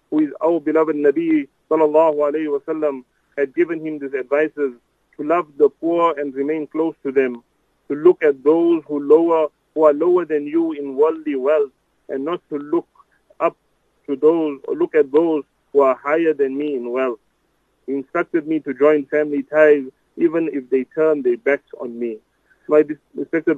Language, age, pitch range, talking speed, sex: English, 40-59, 145-165 Hz, 185 wpm, male